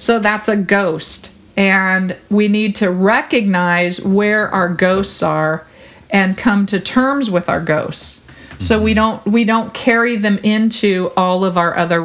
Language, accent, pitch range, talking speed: English, American, 190-225 Hz, 160 wpm